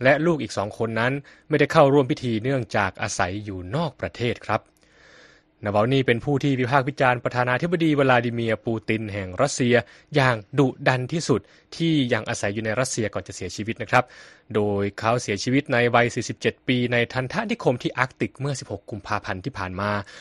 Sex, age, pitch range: male, 20-39, 110-145 Hz